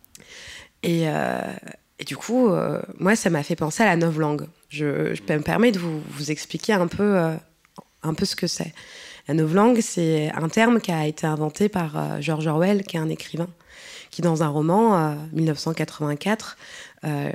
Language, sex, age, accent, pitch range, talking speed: French, female, 20-39, French, 160-200 Hz, 185 wpm